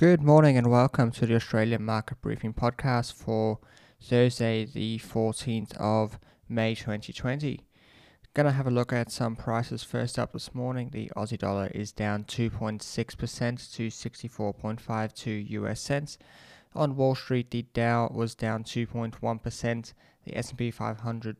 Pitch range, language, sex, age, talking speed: 110-120 Hz, English, male, 20-39, 140 wpm